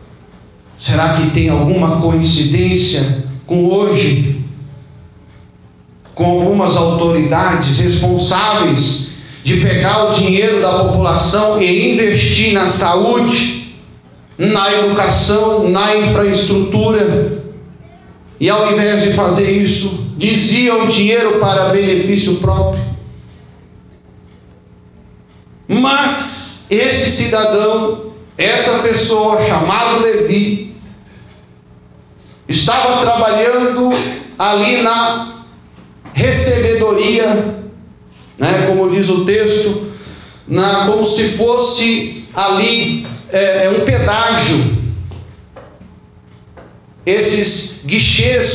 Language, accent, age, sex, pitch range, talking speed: Portuguese, Brazilian, 50-69, male, 150-220 Hz, 80 wpm